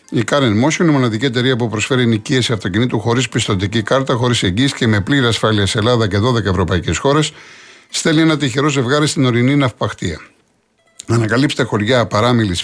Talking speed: 165 wpm